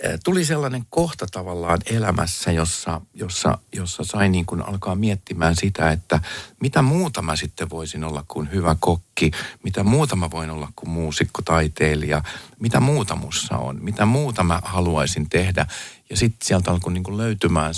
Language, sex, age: Finnish, male, 50-69